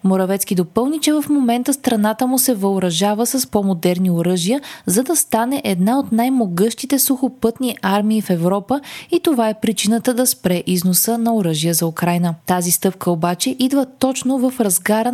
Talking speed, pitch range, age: 160 wpm, 190-260 Hz, 20-39